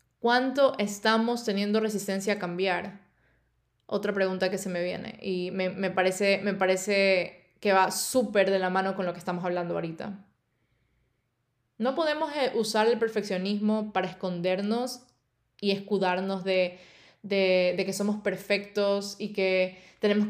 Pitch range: 190-220 Hz